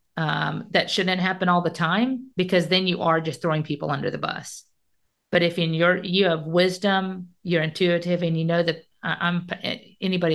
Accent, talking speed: American, 185 wpm